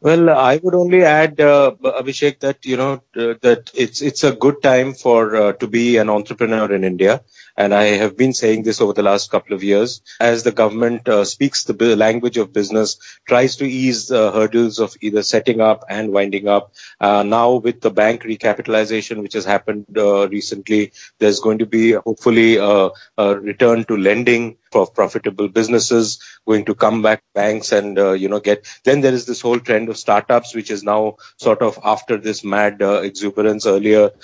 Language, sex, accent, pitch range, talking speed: English, male, Indian, 105-130 Hz, 195 wpm